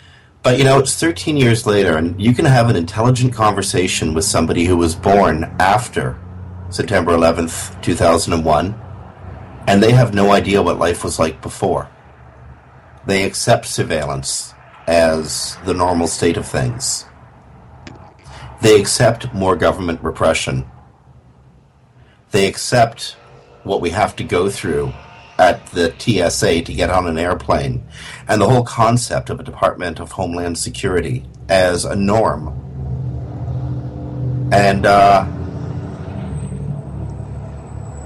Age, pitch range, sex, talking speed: 50-69, 80-110 Hz, male, 125 wpm